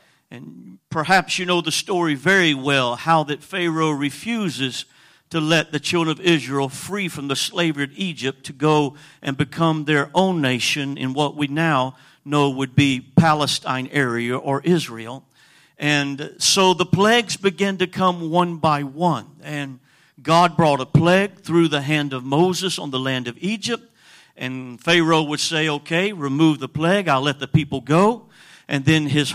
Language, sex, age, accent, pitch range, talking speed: English, male, 50-69, American, 140-175 Hz, 170 wpm